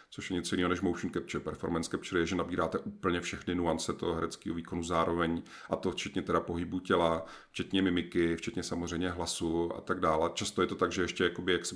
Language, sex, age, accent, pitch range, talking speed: Czech, male, 40-59, native, 85-100 Hz, 215 wpm